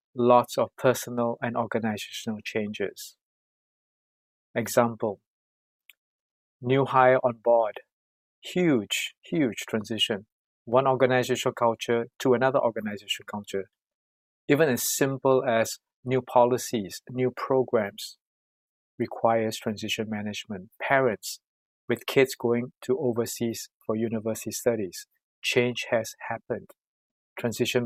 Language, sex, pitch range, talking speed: English, male, 110-125 Hz, 95 wpm